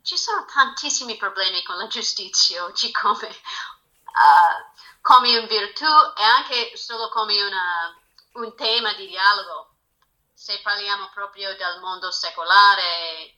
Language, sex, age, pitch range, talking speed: Italian, female, 30-49, 205-290 Hz, 115 wpm